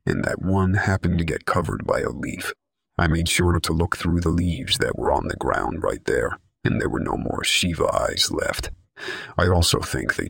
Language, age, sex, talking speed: English, 40-59, male, 215 wpm